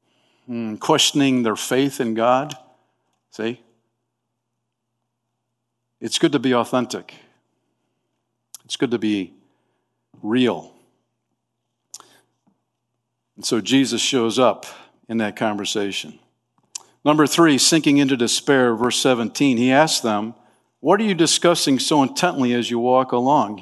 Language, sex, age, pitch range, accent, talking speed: English, male, 50-69, 120-175 Hz, American, 110 wpm